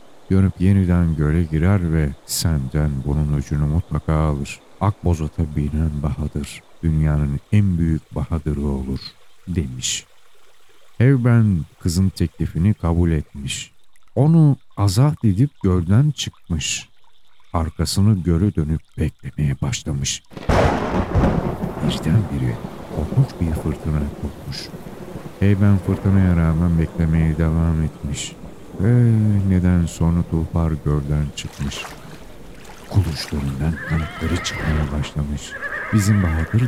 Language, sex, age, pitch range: Turkish, male, 50-69, 75-95 Hz